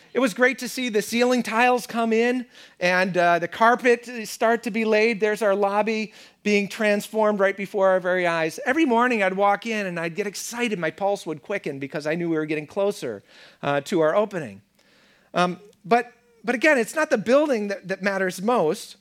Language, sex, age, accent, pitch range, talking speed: English, male, 40-59, American, 155-215 Hz, 200 wpm